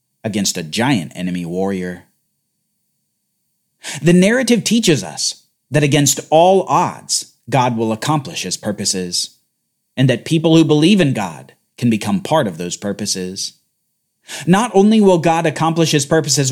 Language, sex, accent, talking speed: English, male, American, 140 wpm